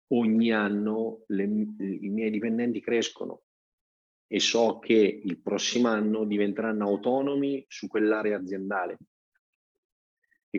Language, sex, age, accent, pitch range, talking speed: Italian, male, 30-49, native, 95-115 Hz, 100 wpm